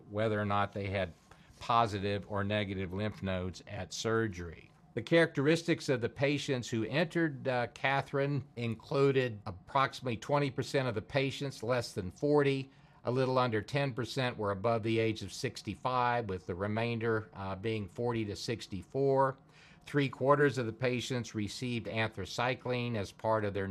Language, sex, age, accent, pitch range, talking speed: English, male, 50-69, American, 105-135 Hz, 150 wpm